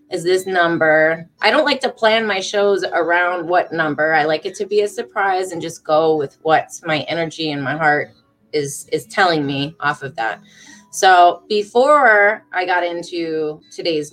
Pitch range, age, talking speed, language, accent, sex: 150-195 Hz, 20-39, 185 wpm, English, American, female